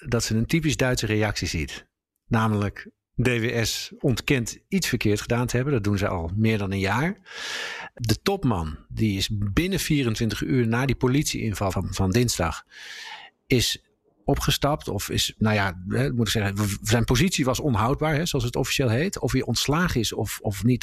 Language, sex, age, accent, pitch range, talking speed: Dutch, male, 50-69, Dutch, 110-145 Hz, 180 wpm